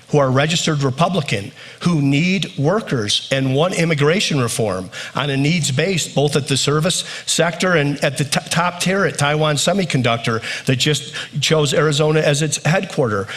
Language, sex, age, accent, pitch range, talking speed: English, male, 50-69, American, 135-165 Hz, 160 wpm